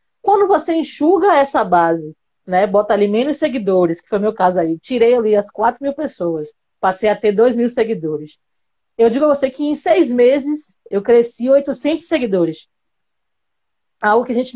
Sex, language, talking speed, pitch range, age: female, Portuguese, 180 wpm, 205-265 Hz, 20-39